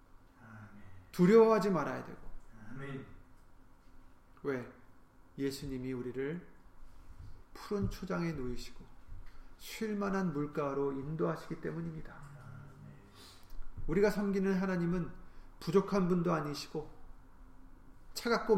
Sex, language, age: male, Korean, 40-59